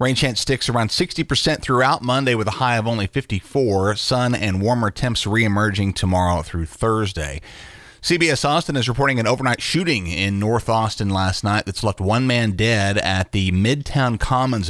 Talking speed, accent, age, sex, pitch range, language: 170 wpm, American, 30-49, male, 95-130 Hz, English